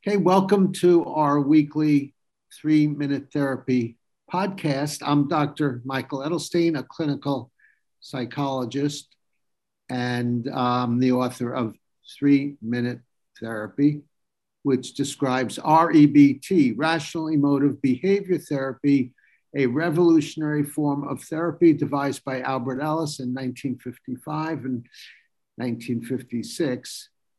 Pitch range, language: 125-150 Hz, English